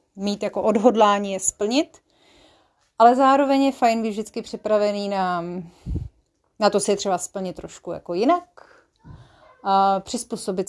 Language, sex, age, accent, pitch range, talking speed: Czech, female, 30-49, native, 190-245 Hz, 135 wpm